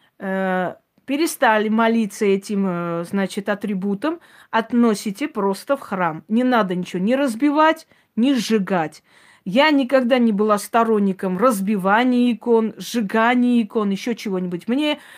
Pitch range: 200-250 Hz